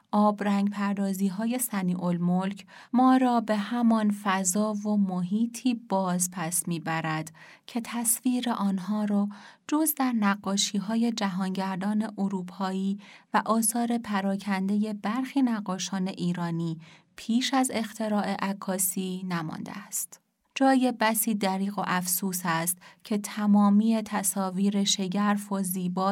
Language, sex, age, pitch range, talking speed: Persian, female, 30-49, 180-215 Hz, 110 wpm